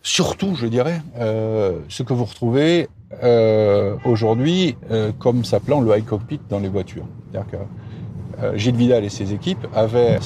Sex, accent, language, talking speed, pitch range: male, French, French, 165 wpm, 110-135 Hz